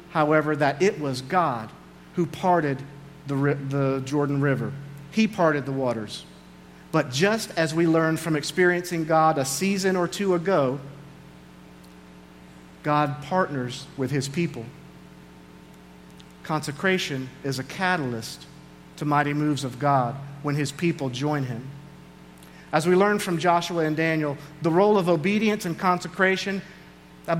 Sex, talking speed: male, 135 wpm